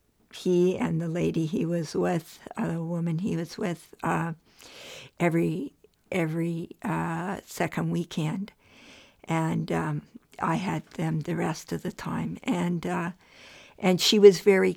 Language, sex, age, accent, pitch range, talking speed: English, female, 60-79, American, 170-195 Hz, 140 wpm